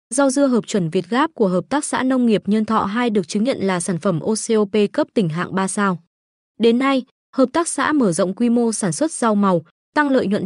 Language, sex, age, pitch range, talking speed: Vietnamese, female, 20-39, 195-255 Hz, 245 wpm